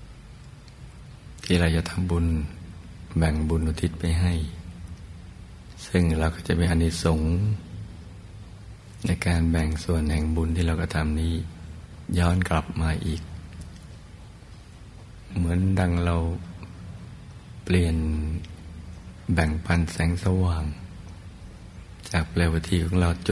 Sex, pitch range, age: male, 80-90 Hz, 60-79